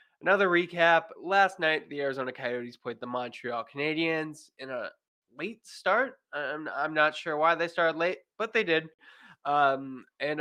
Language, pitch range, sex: English, 130-185 Hz, male